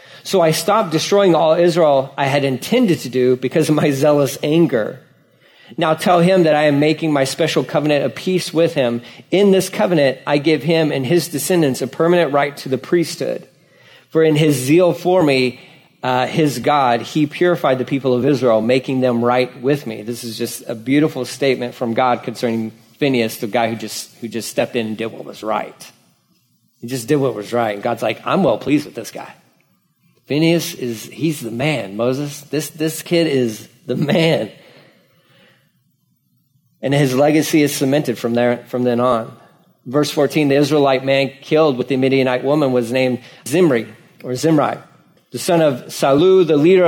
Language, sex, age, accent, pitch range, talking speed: English, male, 40-59, American, 125-155 Hz, 185 wpm